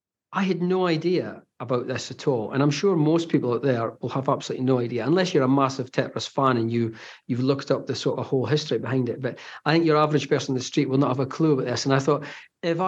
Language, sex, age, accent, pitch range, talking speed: English, male, 40-59, British, 130-165 Hz, 270 wpm